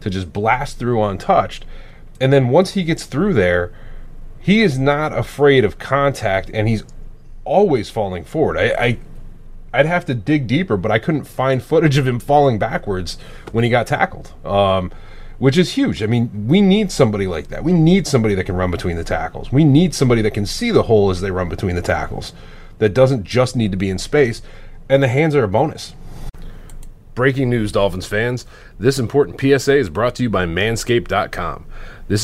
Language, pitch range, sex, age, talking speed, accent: English, 100-135 Hz, male, 30-49, 195 wpm, American